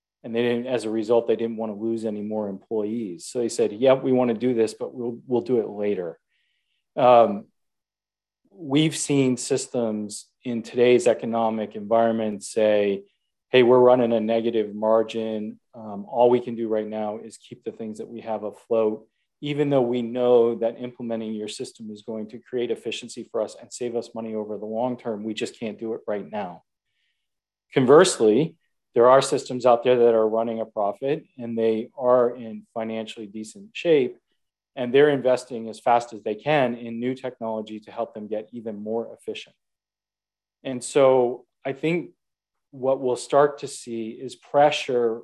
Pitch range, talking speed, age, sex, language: 110-130 Hz, 180 wpm, 40-59, male, English